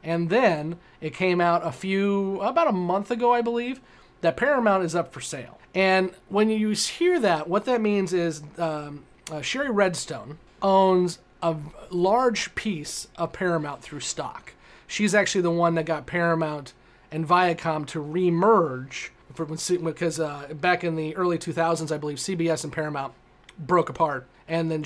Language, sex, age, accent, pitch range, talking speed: English, male, 30-49, American, 155-190 Hz, 160 wpm